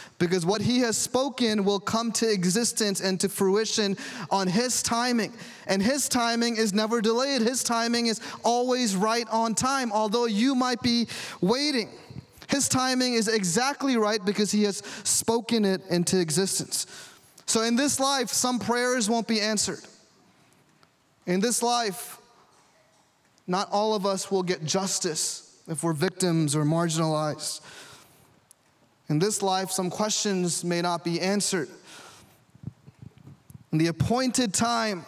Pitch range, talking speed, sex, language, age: 185-230 Hz, 140 wpm, male, English, 20-39